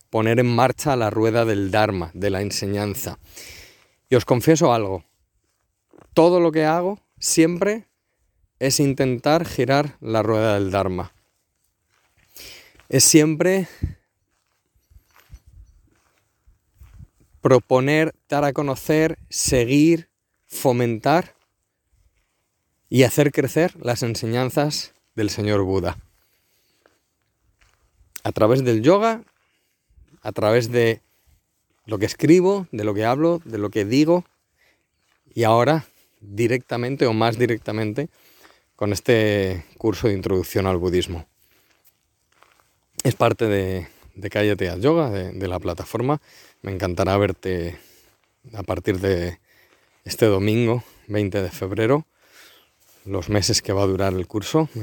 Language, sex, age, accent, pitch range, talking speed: Spanish, male, 40-59, Spanish, 95-130 Hz, 115 wpm